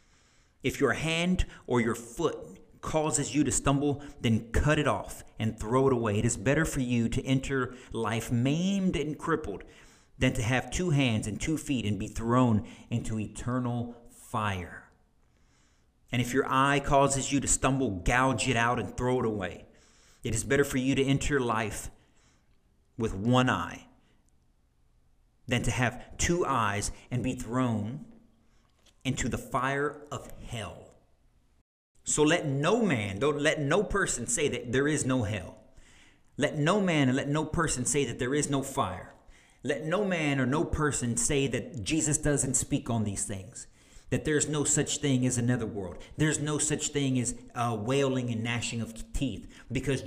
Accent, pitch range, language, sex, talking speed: American, 110-140 Hz, English, male, 170 wpm